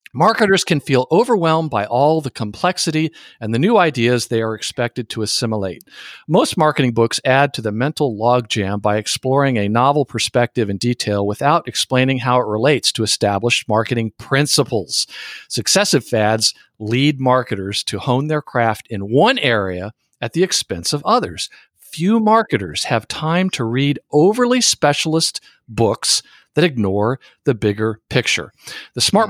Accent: American